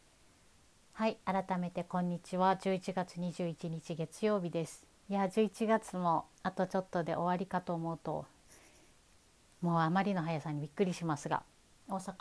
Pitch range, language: 165-200 Hz, Japanese